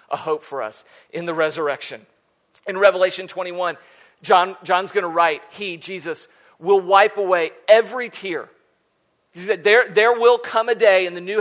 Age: 40-59